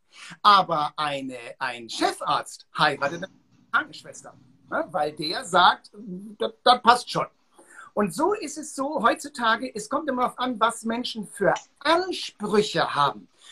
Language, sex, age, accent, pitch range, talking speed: German, male, 50-69, German, 170-255 Hz, 140 wpm